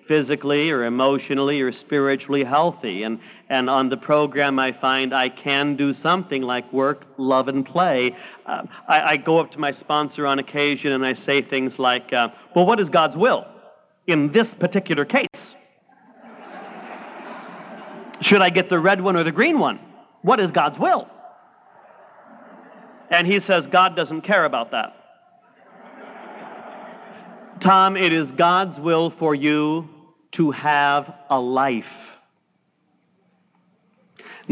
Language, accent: English, American